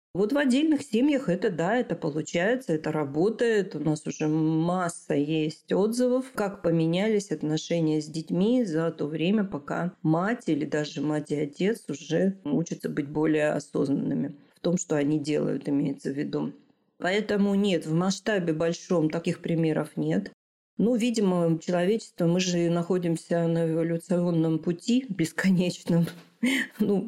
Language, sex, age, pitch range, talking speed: Russian, female, 40-59, 155-185 Hz, 140 wpm